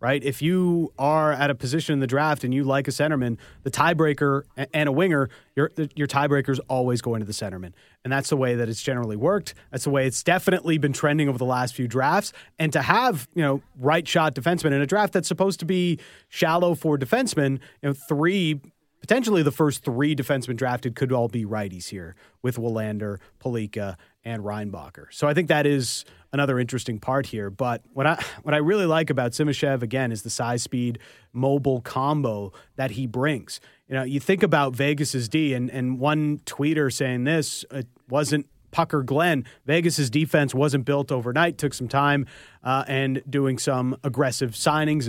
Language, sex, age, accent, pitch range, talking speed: English, male, 30-49, American, 125-155 Hz, 195 wpm